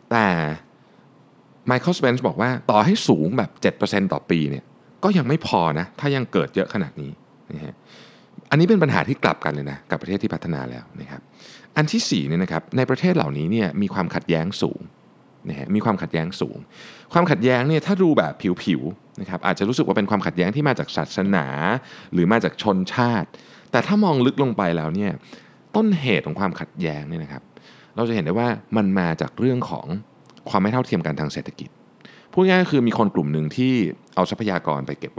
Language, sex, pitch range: Thai, male, 85-145 Hz